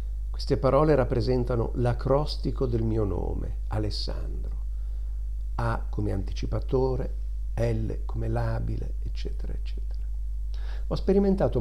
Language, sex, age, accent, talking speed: Italian, male, 50-69, native, 95 wpm